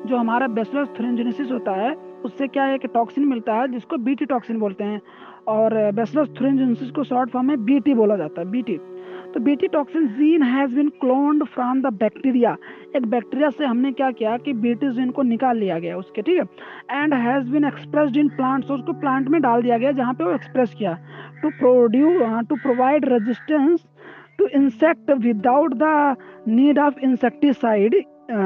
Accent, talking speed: native, 90 wpm